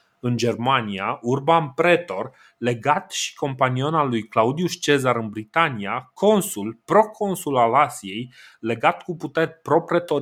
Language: Romanian